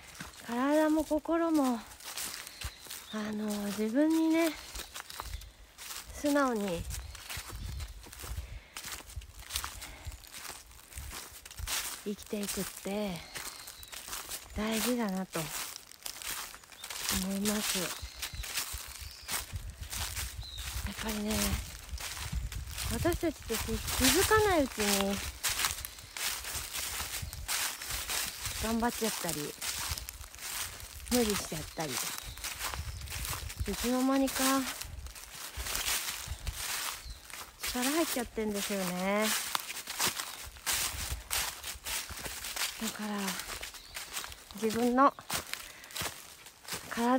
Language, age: Japanese, 40-59